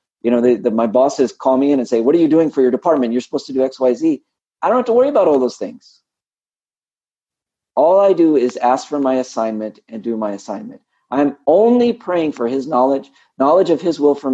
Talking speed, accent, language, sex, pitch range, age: 240 wpm, American, English, male, 115-150 Hz, 50-69